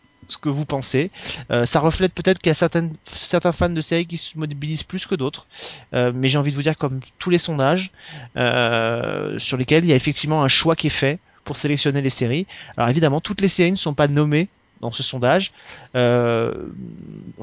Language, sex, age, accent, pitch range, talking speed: French, male, 30-49, French, 140-170 Hz, 215 wpm